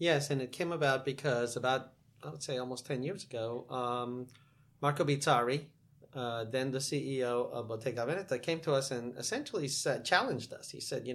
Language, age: English, 40-59